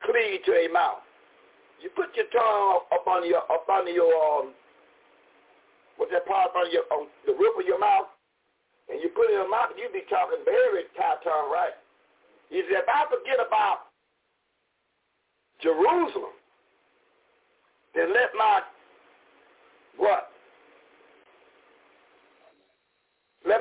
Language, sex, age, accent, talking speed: English, male, 60-79, American, 135 wpm